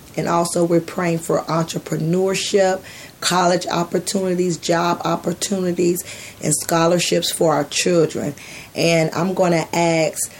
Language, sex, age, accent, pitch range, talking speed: English, female, 40-59, American, 155-175 Hz, 115 wpm